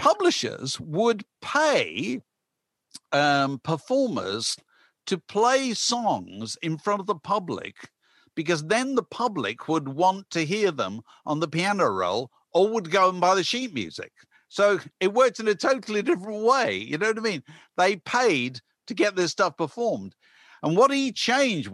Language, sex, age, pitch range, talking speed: English, male, 50-69, 150-225 Hz, 160 wpm